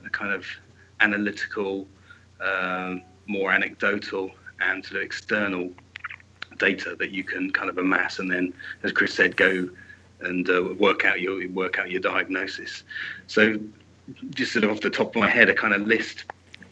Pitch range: 95-105 Hz